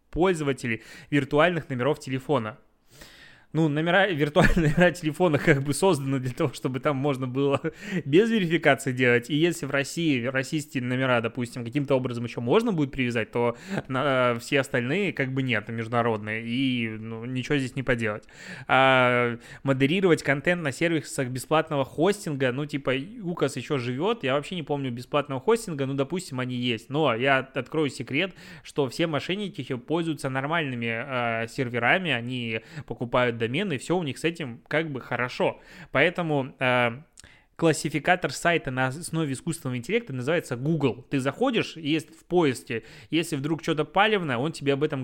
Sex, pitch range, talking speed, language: male, 130-160 Hz, 155 wpm, Russian